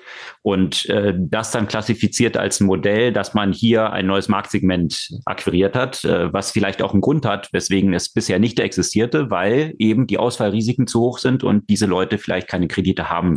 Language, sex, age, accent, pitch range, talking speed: German, male, 30-49, German, 100-125 Hz, 190 wpm